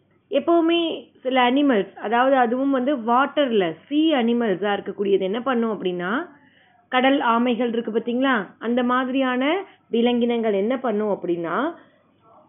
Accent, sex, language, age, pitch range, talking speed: native, female, Tamil, 30-49, 230-290 Hz, 110 wpm